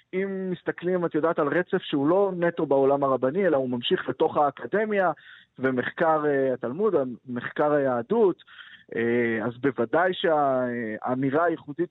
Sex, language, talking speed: male, Hebrew, 120 wpm